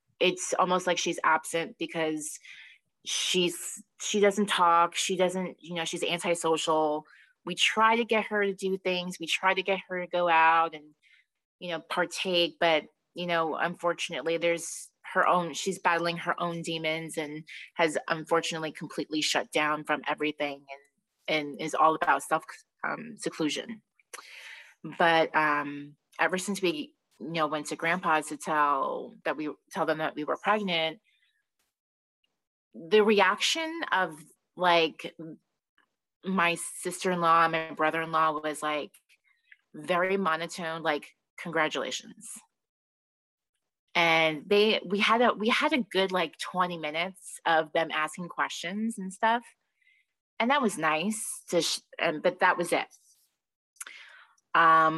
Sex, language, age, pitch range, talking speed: female, English, 30-49, 155-185 Hz, 145 wpm